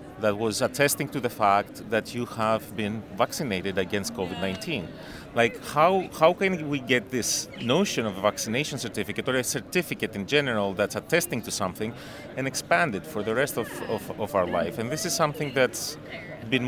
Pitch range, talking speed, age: 110-150 Hz, 185 wpm, 30-49